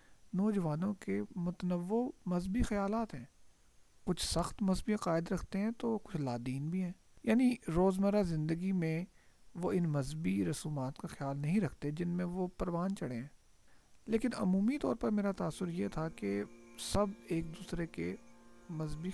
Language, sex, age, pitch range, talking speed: Urdu, male, 50-69, 125-195 Hz, 155 wpm